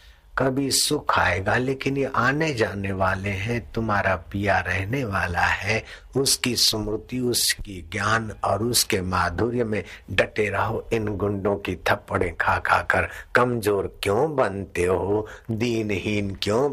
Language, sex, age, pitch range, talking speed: Hindi, male, 60-79, 85-120 Hz, 135 wpm